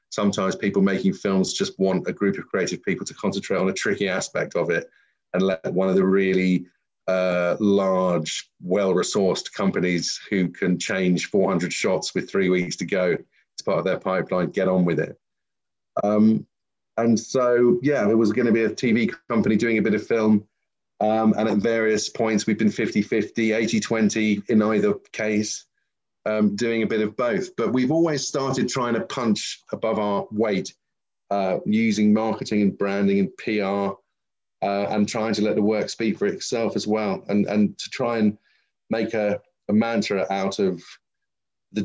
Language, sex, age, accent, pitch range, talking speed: English, male, 40-59, British, 95-110 Hz, 180 wpm